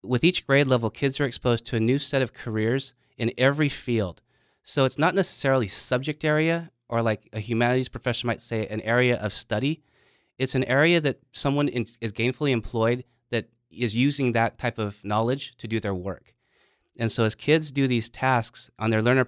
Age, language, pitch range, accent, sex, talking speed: 30-49, English, 110-130 Hz, American, male, 195 wpm